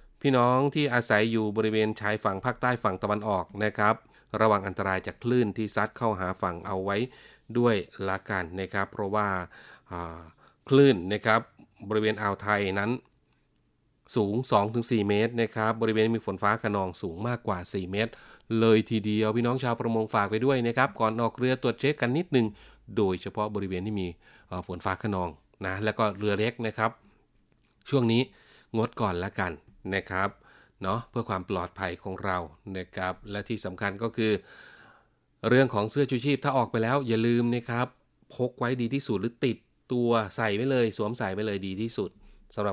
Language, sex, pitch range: Thai, male, 100-115 Hz